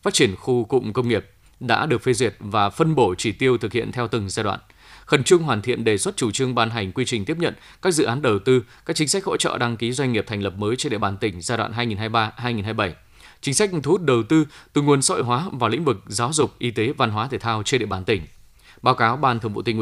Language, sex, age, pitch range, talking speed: Vietnamese, male, 20-39, 110-130 Hz, 270 wpm